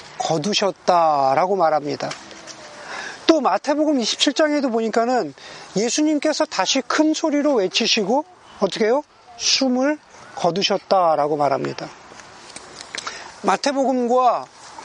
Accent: native